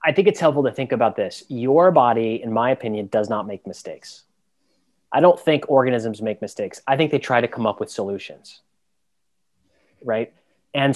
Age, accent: 30-49, American